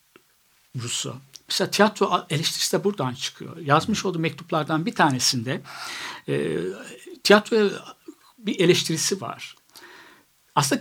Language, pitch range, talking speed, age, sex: Turkish, 135-200 Hz, 100 wpm, 60-79, male